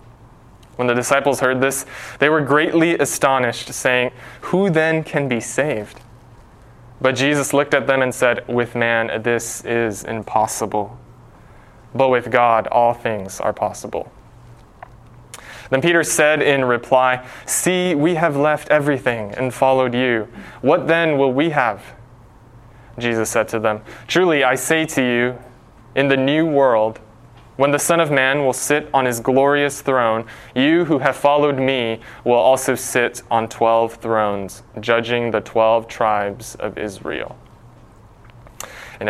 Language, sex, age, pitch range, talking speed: English, male, 20-39, 115-130 Hz, 145 wpm